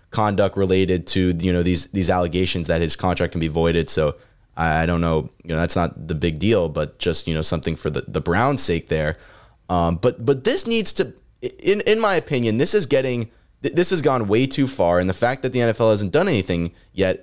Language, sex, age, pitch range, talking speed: English, male, 20-39, 95-135 Hz, 225 wpm